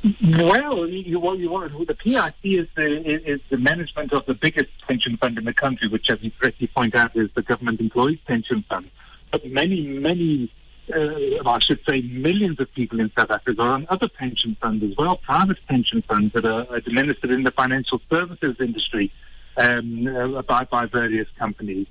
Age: 50-69